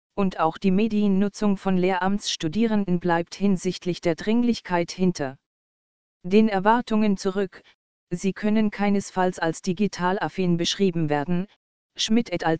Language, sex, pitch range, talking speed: German, female, 175-205 Hz, 115 wpm